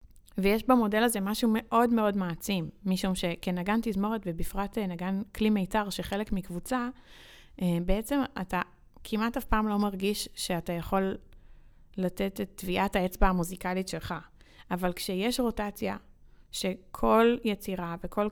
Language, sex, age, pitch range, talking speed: Hebrew, female, 20-39, 180-210 Hz, 120 wpm